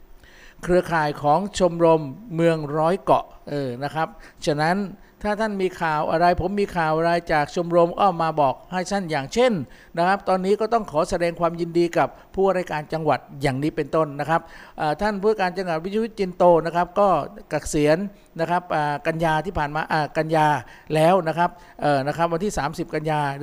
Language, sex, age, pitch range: Thai, male, 60-79, 155-190 Hz